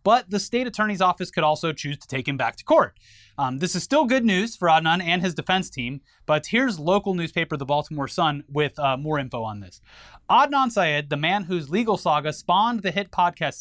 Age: 30-49